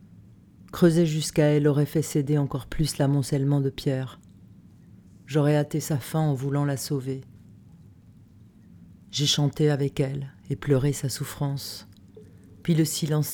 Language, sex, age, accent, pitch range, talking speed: French, female, 40-59, French, 110-155 Hz, 135 wpm